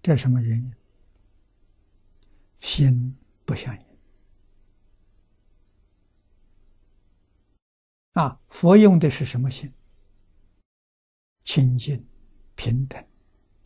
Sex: male